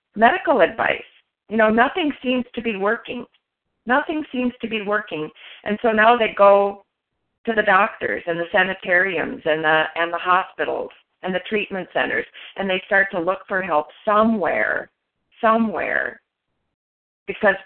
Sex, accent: female, American